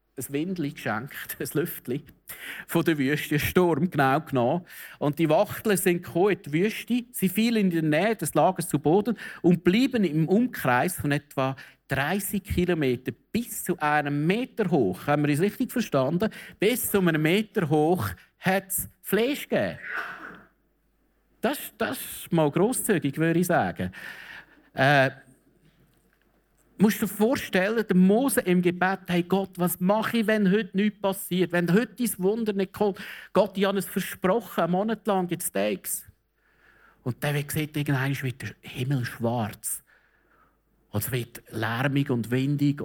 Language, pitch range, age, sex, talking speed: German, 125-195 Hz, 50-69, male, 155 wpm